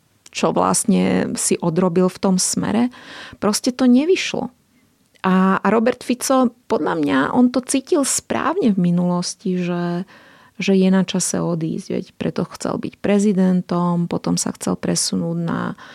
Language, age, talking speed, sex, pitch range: Slovak, 30-49, 140 wpm, female, 180-230 Hz